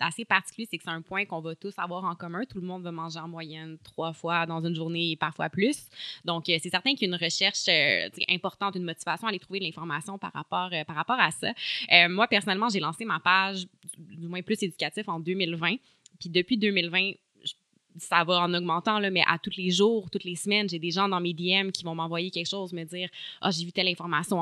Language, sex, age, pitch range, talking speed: French, female, 20-39, 165-195 Hz, 245 wpm